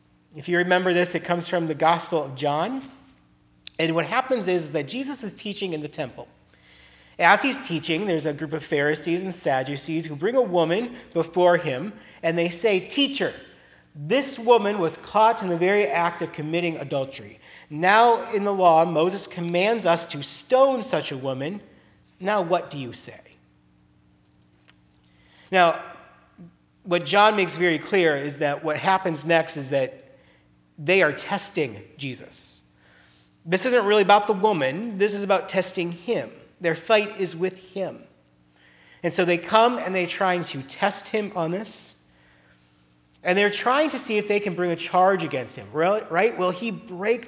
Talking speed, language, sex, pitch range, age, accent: 170 wpm, English, male, 135-190 Hz, 40-59, American